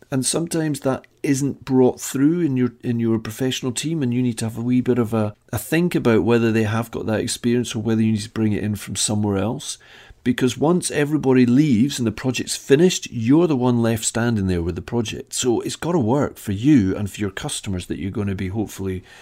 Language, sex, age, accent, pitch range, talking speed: English, male, 40-59, British, 105-140 Hz, 235 wpm